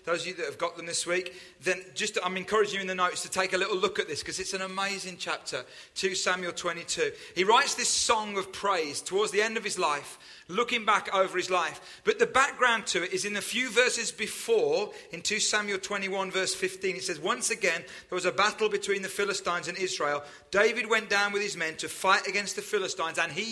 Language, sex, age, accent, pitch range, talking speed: English, male, 30-49, British, 185-225 Hz, 235 wpm